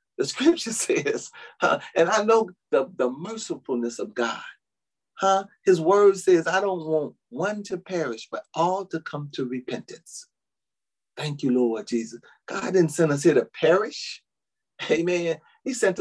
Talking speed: 150 wpm